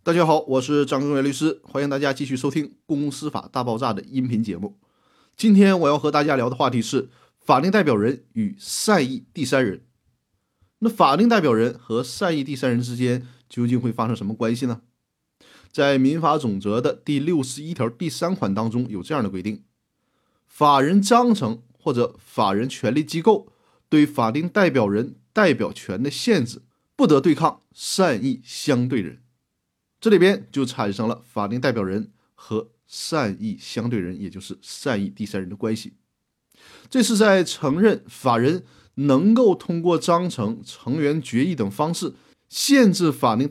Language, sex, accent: Chinese, male, native